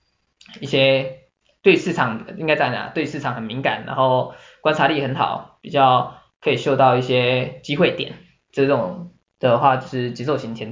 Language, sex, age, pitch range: Chinese, male, 20-39, 130-155 Hz